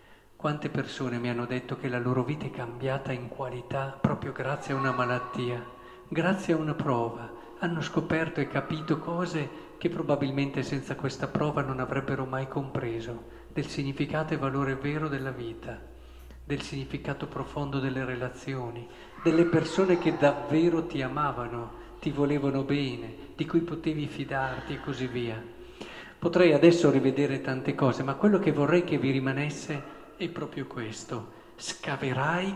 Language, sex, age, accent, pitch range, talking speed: Italian, male, 50-69, native, 125-160 Hz, 145 wpm